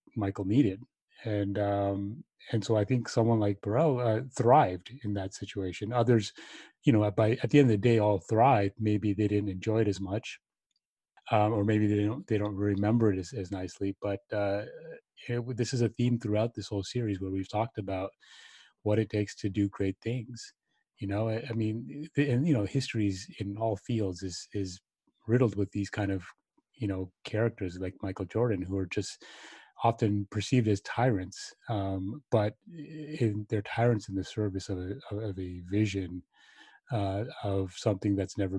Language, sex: English, male